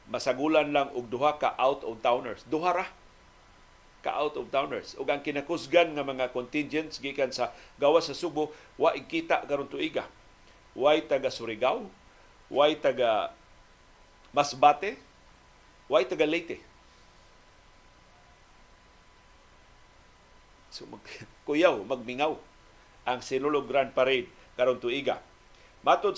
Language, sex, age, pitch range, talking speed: Filipino, male, 50-69, 125-175 Hz, 110 wpm